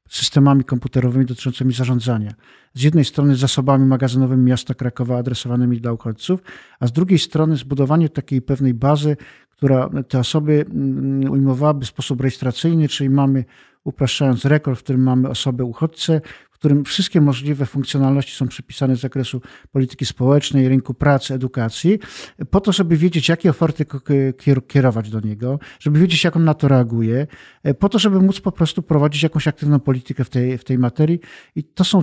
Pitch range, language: 125-150 Hz, Polish